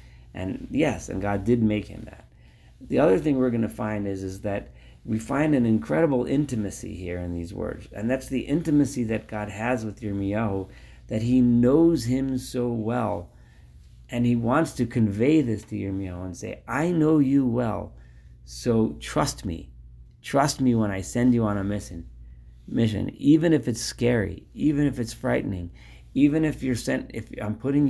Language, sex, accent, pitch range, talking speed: English, male, American, 95-125 Hz, 180 wpm